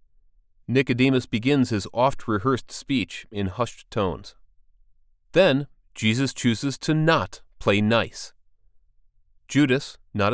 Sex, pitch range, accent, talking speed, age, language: male, 100-140 Hz, American, 100 wpm, 30-49, English